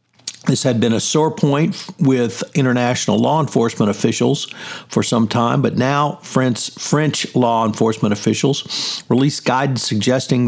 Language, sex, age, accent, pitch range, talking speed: English, male, 50-69, American, 115-135 Hz, 140 wpm